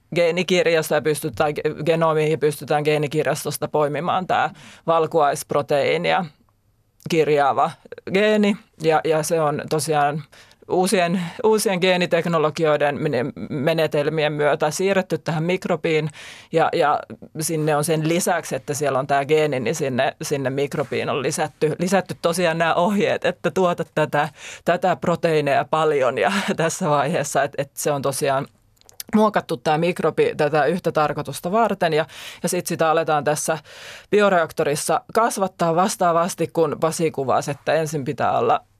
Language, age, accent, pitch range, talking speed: Finnish, 30-49, native, 145-175 Hz, 125 wpm